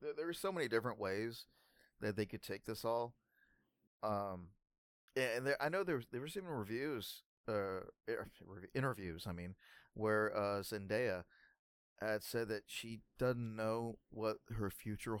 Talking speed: 155 wpm